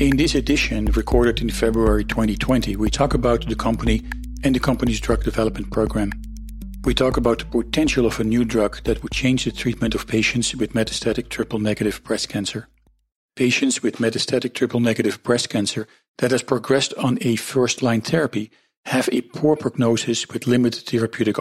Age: 50-69